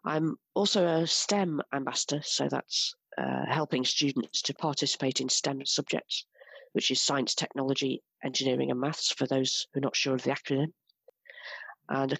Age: 40-59